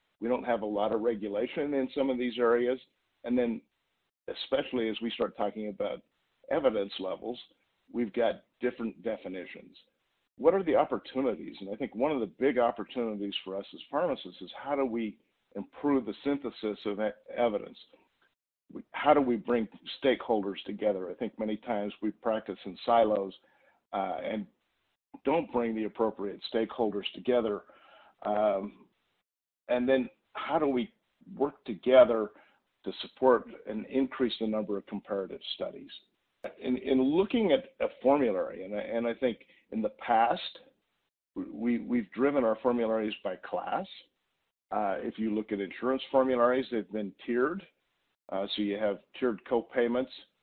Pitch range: 110-130 Hz